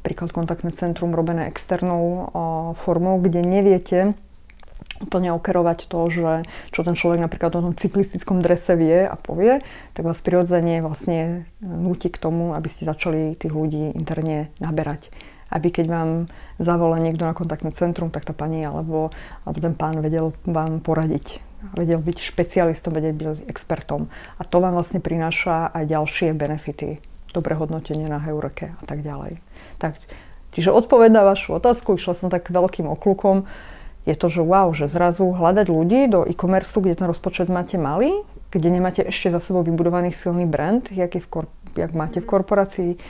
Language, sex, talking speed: Slovak, female, 165 wpm